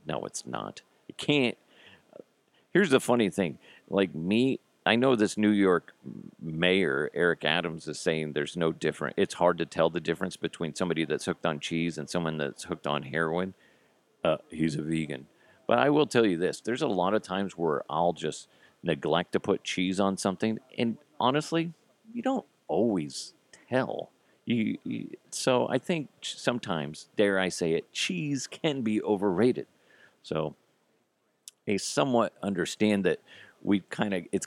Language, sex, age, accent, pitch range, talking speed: English, male, 40-59, American, 80-105 Hz, 160 wpm